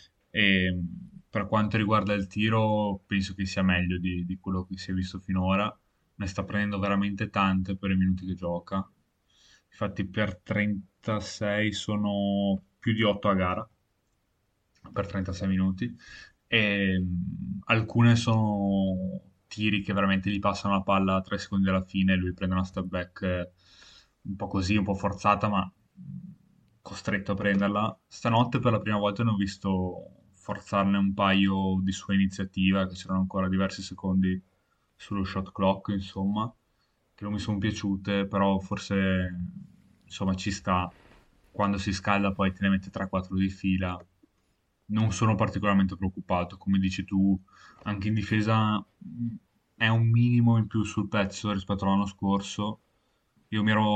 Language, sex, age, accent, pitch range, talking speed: Italian, male, 10-29, native, 95-105 Hz, 150 wpm